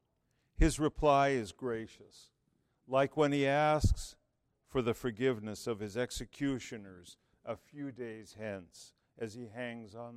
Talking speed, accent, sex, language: 130 wpm, American, male, English